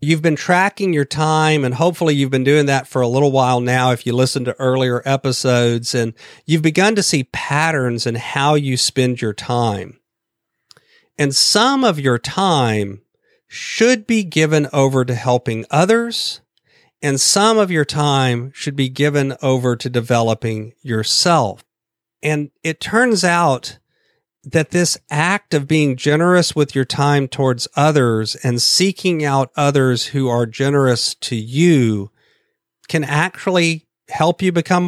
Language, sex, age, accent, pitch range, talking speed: English, male, 40-59, American, 125-165 Hz, 150 wpm